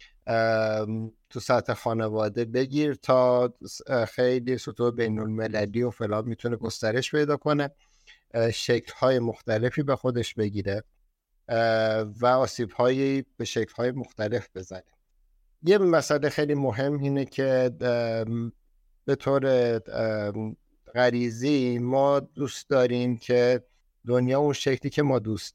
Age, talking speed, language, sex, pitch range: 50-69, 105 wpm, Persian, male, 110-135 Hz